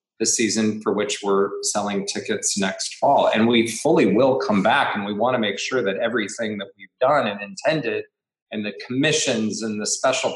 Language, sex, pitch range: English, male, 105-160 Hz